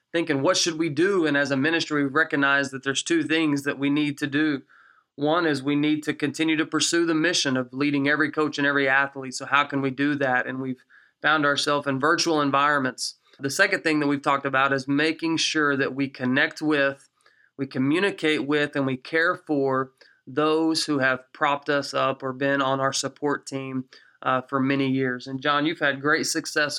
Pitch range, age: 135-155 Hz, 30-49